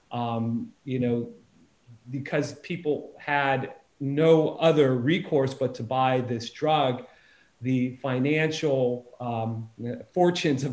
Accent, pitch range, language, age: American, 125-150 Hz, English, 40-59